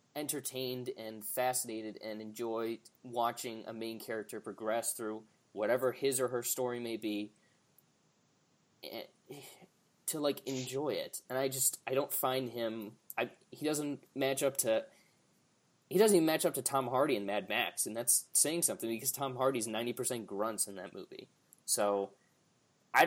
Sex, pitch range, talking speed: male, 120-140 Hz, 160 wpm